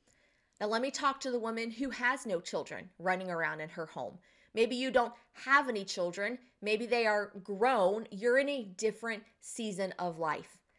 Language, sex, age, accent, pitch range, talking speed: English, female, 20-39, American, 205-270 Hz, 185 wpm